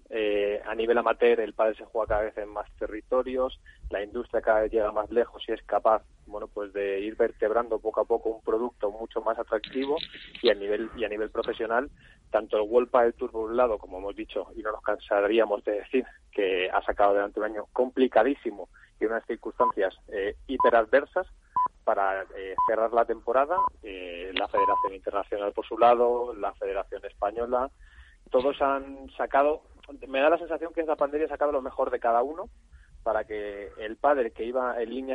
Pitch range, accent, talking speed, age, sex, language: 110-165 Hz, Spanish, 190 wpm, 20-39, male, Spanish